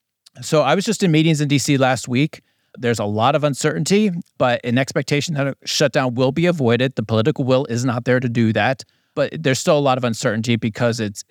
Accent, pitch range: American, 115-140 Hz